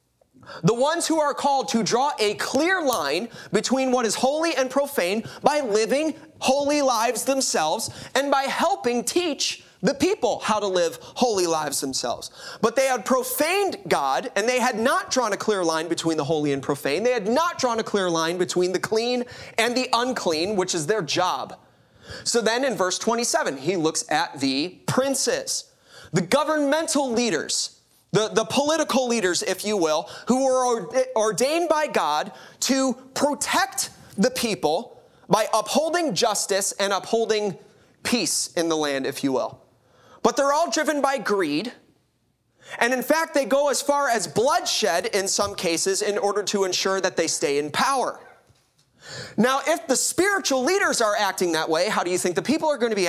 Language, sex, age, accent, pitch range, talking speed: English, male, 30-49, American, 185-275 Hz, 175 wpm